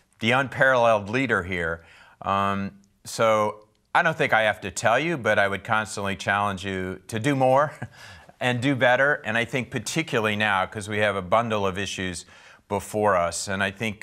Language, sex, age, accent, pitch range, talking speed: English, male, 40-59, American, 95-125 Hz, 185 wpm